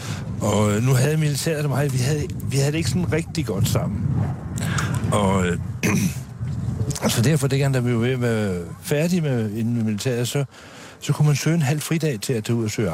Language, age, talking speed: Danish, 60-79, 190 wpm